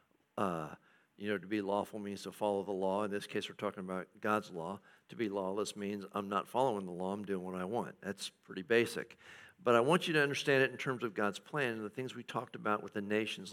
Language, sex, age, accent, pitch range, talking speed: English, male, 50-69, American, 105-120 Hz, 255 wpm